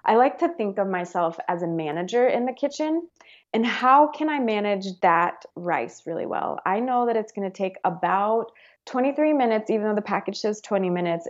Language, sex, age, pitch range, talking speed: English, female, 20-39, 175-225 Hz, 200 wpm